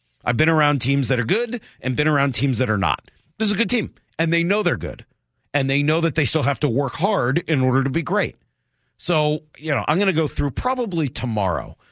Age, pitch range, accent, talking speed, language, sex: 40-59, 105-155 Hz, American, 245 wpm, English, male